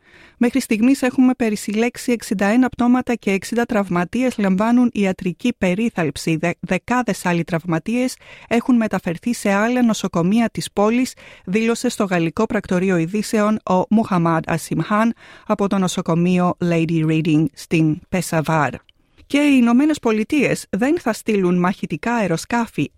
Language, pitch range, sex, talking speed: Greek, 175-235 Hz, female, 125 wpm